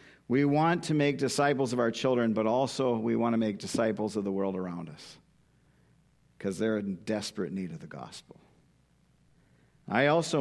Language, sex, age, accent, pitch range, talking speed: English, male, 50-69, American, 110-145 Hz, 175 wpm